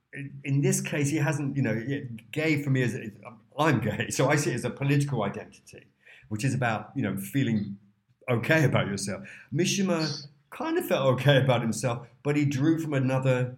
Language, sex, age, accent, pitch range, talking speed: English, male, 50-69, British, 105-140 Hz, 185 wpm